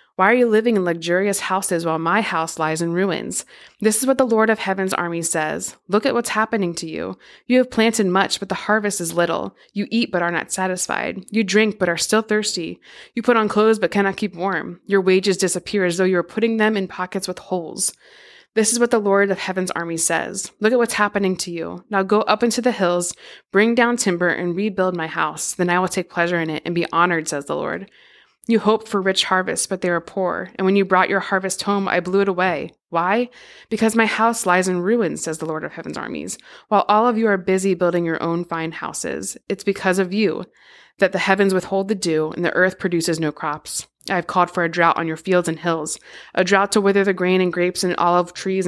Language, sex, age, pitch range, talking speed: English, female, 20-39, 175-205 Hz, 235 wpm